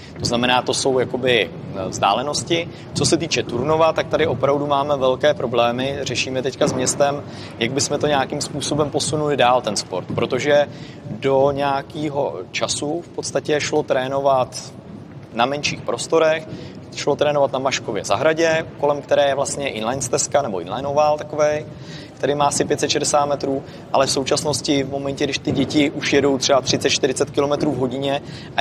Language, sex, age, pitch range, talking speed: Czech, male, 30-49, 120-145 Hz, 155 wpm